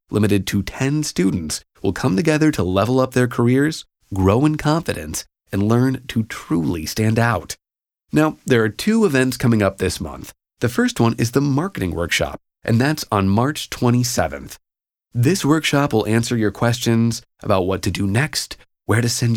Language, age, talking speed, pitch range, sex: English, 30-49, 175 wpm, 100-145 Hz, male